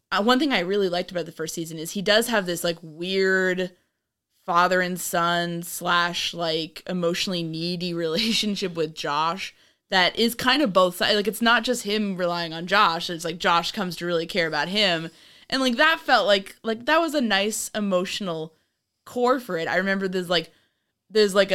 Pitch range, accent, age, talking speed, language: 170-210 Hz, American, 20-39, 190 wpm, English